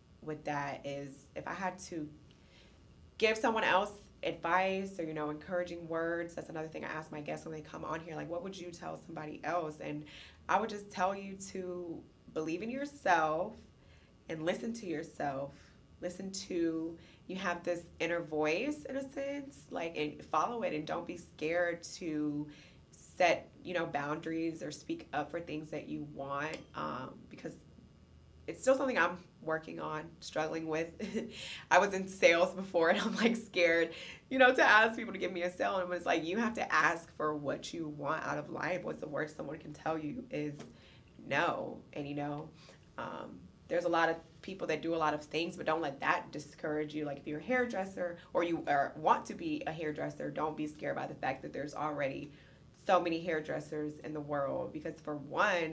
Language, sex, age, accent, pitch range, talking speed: English, female, 20-39, American, 150-185 Hz, 200 wpm